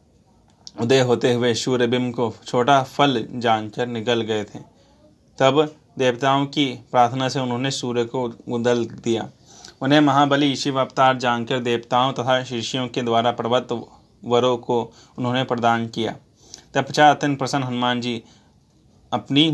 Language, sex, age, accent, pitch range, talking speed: Hindi, male, 30-49, native, 120-135 Hz, 140 wpm